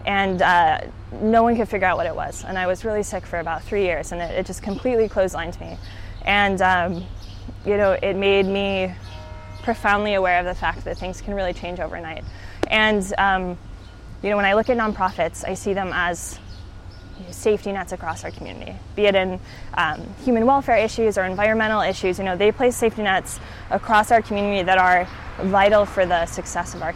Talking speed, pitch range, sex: 200 wpm, 175-205 Hz, female